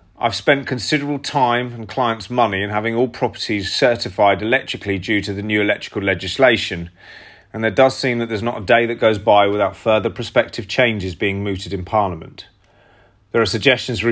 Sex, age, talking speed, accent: male, 30-49, 185 wpm, British